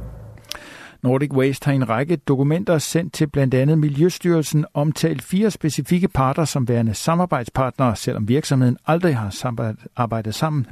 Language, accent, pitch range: Danish, native, 120-145 Hz